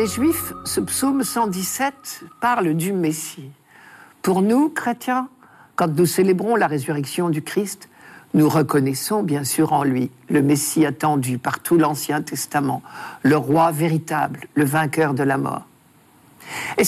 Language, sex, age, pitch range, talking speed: French, male, 60-79, 160-230 Hz, 145 wpm